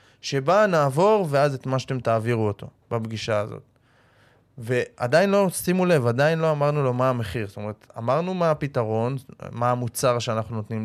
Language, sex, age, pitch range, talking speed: Hebrew, male, 20-39, 120-160 Hz, 160 wpm